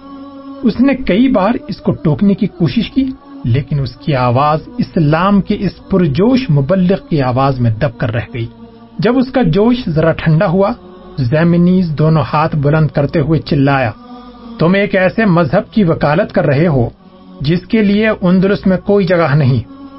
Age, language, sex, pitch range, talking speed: 40-59, Urdu, male, 155-200 Hz, 170 wpm